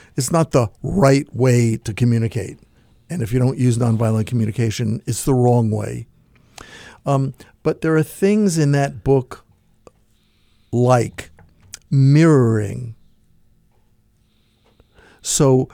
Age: 50-69